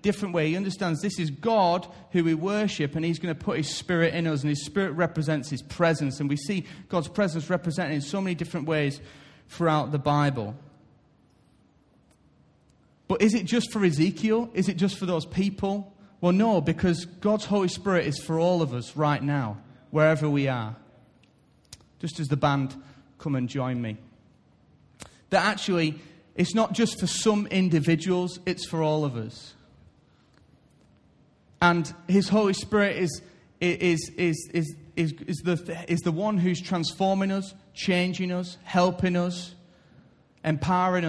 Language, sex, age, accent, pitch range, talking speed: English, male, 30-49, British, 150-185 Hz, 160 wpm